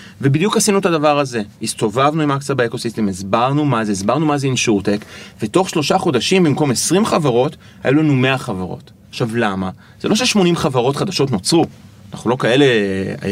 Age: 30-49